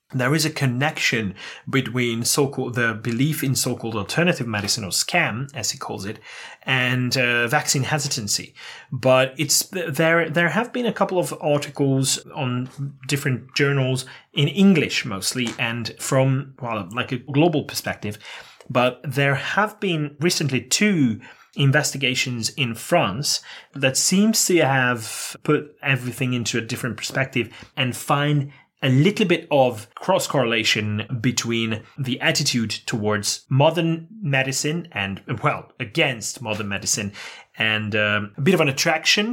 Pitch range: 115-150 Hz